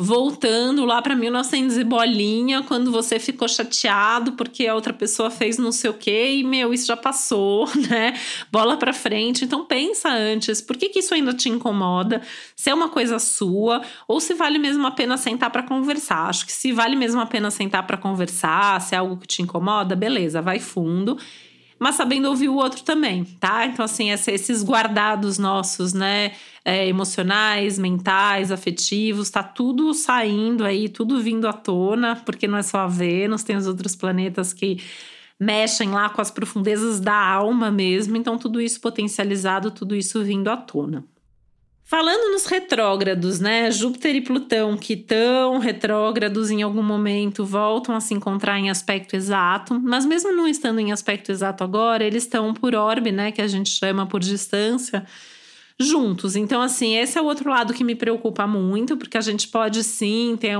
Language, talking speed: Portuguese, 180 wpm